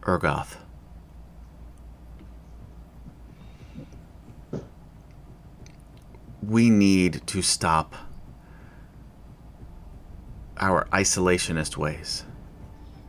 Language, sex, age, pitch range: English, male, 30-49, 80-100 Hz